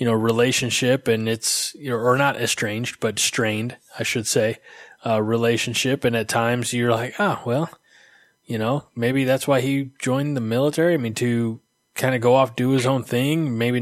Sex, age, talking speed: male, 20-39, 200 wpm